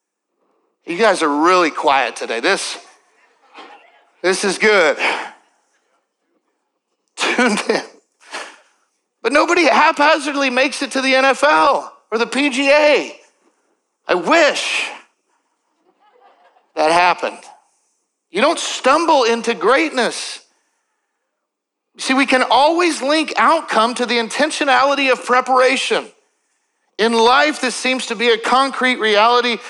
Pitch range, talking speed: 220-295 Hz, 105 wpm